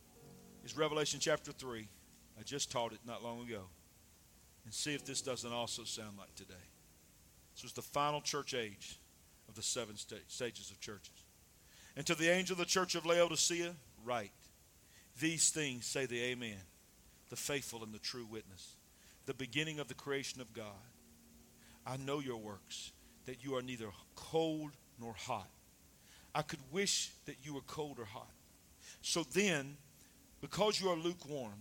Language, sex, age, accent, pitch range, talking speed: English, male, 50-69, American, 100-155 Hz, 165 wpm